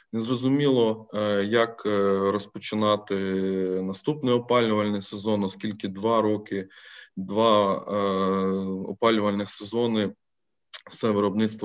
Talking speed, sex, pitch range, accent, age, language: 75 wpm, male, 100-115 Hz, native, 20-39, Ukrainian